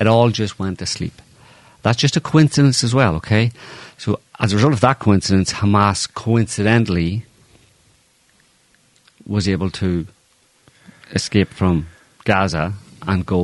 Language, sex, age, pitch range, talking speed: English, male, 40-59, 80-105 Hz, 135 wpm